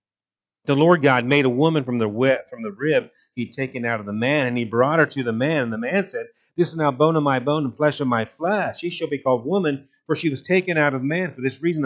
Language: English